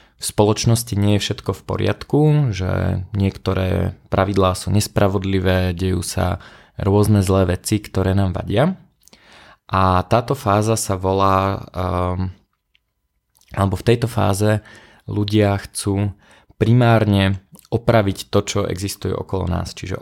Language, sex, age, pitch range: Slovak, male, 20-39, 95-110 Hz